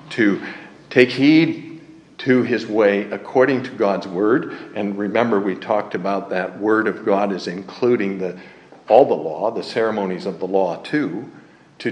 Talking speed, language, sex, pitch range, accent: 155 wpm, English, male, 115-145 Hz, American